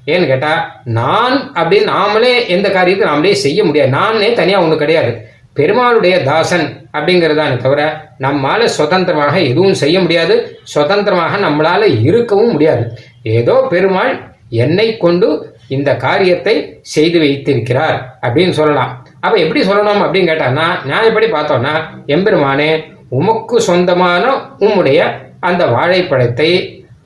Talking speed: 115 wpm